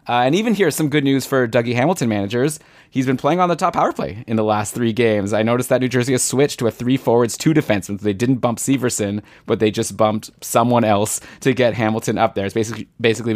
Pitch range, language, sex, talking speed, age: 115-150 Hz, English, male, 250 wpm, 20-39